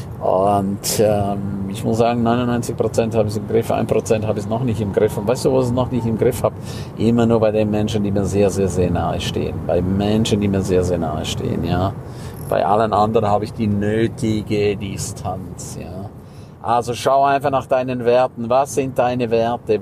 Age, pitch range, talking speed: 50-69, 105-130 Hz, 210 wpm